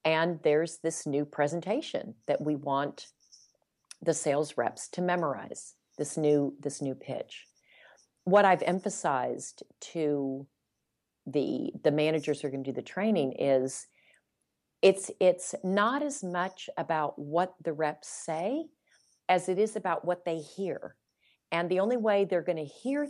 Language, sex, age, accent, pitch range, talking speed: English, female, 40-59, American, 150-195 Hz, 150 wpm